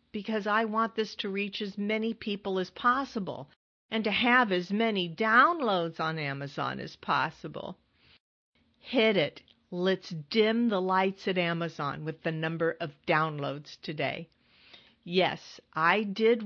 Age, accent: 50-69, American